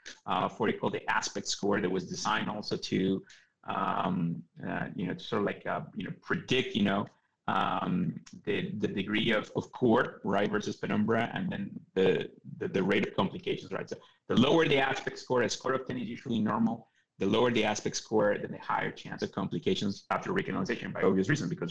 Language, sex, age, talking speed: English, male, 30-49, 210 wpm